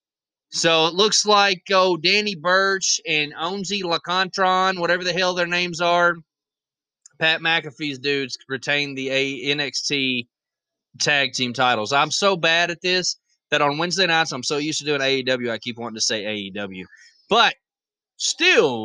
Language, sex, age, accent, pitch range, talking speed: English, male, 20-39, American, 145-195 Hz, 150 wpm